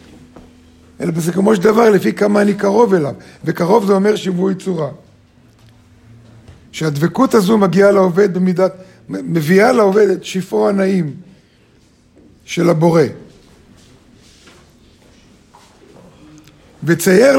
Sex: male